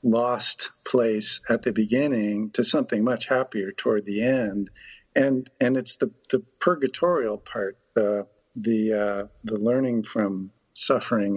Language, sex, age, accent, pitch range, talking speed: English, male, 50-69, American, 105-125 Hz, 135 wpm